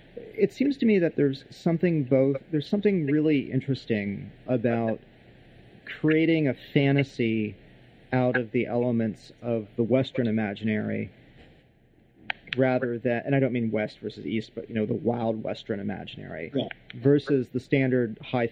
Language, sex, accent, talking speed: English, male, American, 145 wpm